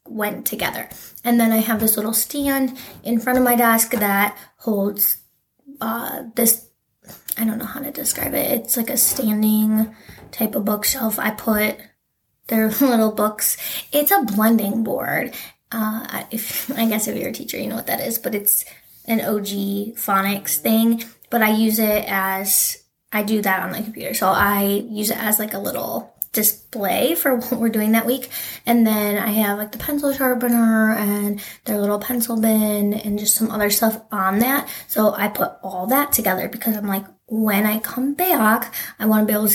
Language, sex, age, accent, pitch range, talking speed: English, female, 20-39, American, 210-235 Hz, 190 wpm